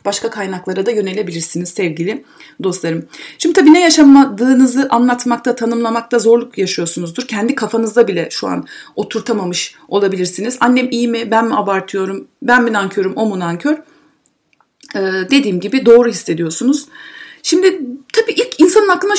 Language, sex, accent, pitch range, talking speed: Turkish, female, native, 200-315 Hz, 135 wpm